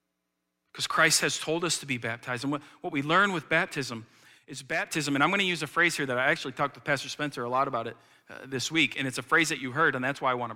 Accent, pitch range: American, 115-160 Hz